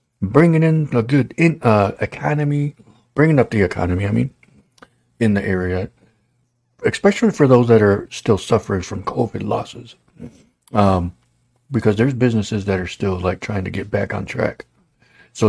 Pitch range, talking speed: 90-120 Hz, 155 wpm